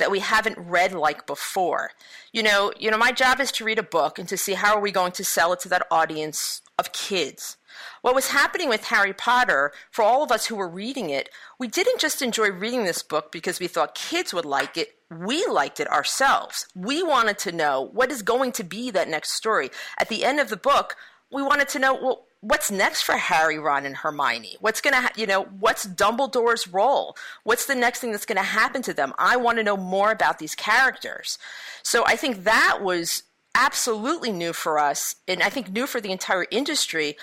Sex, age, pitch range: female, 40-59, 180-250 Hz